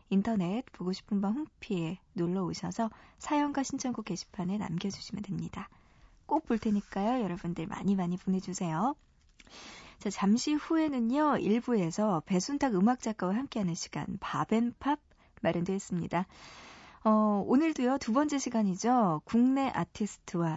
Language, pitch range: Korean, 190-260 Hz